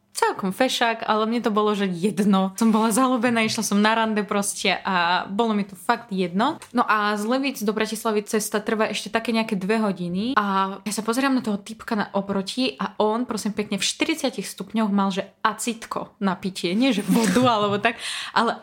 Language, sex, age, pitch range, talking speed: Slovak, female, 20-39, 215-295 Hz, 195 wpm